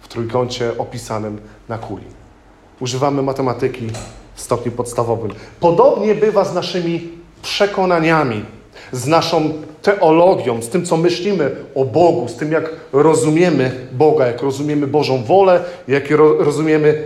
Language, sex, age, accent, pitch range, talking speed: Polish, male, 40-59, native, 130-180 Hz, 120 wpm